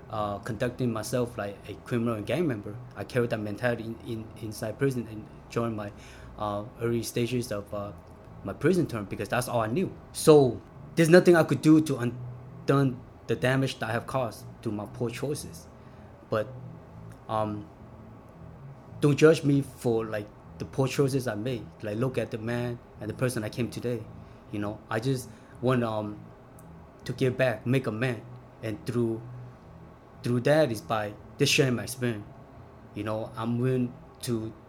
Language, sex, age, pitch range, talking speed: English, male, 20-39, 110-130 Hz, 175 wpm